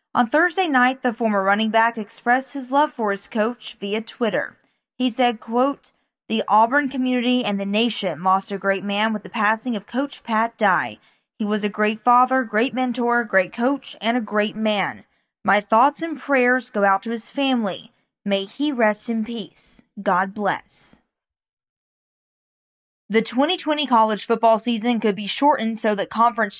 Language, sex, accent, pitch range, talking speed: English, female, American, 210-255 Hz, 170 wpm